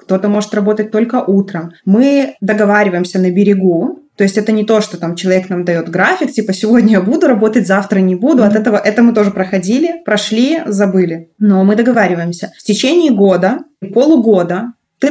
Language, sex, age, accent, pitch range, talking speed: Russian, female, 20-39, native, 190-225 Hz, 180 wpm